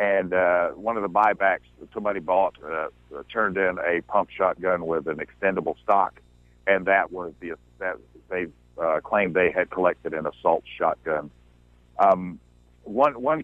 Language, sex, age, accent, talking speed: English, male, 60-79, American, 165 wpm